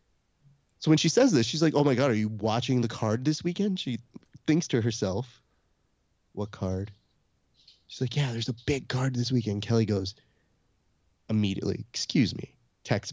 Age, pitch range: 30-49, 100-140 Hz